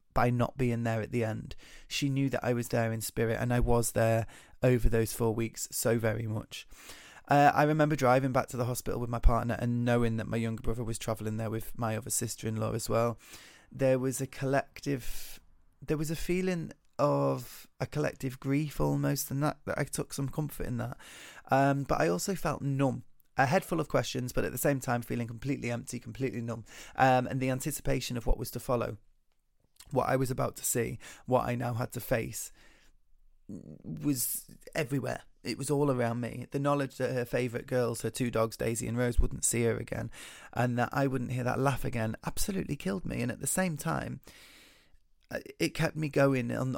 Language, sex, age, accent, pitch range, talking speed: English, male, 20-39, British, 115-135 Hz, 205 wpm